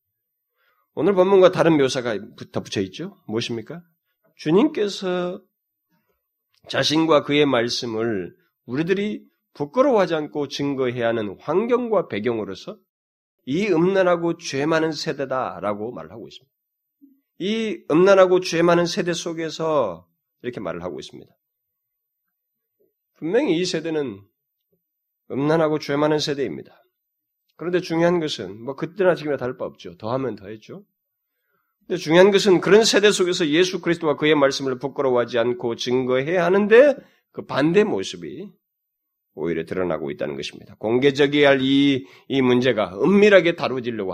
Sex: male